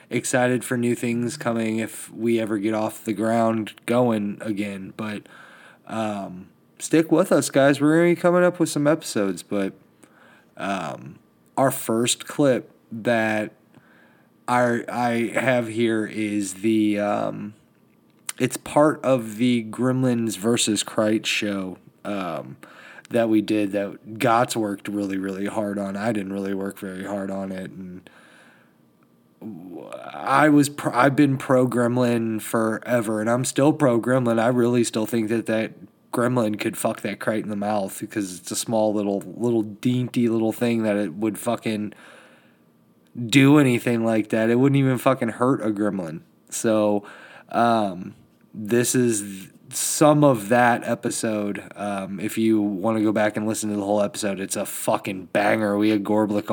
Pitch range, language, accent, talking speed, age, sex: 105-120 Hz, English, American, 155 wpm, 20-39, male